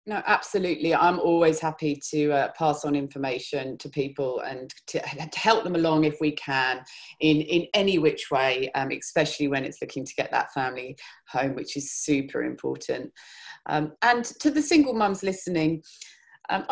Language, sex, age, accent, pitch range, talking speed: English, female, 30-49, British, 145-195 Hz, 170 wpm